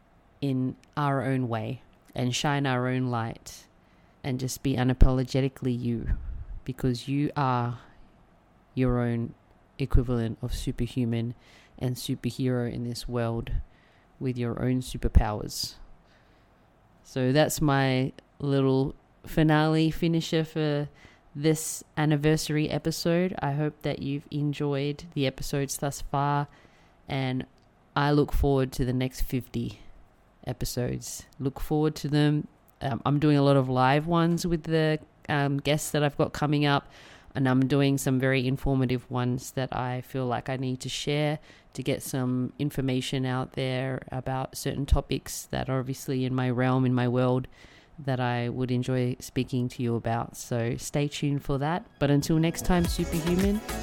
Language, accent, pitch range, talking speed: English, Australian, 125-145 Hz, 145 wpm